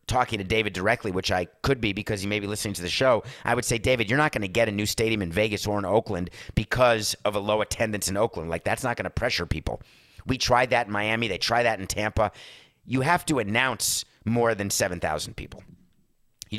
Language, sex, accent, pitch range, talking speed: English, male, American, 100-130 Hz, 240 wpm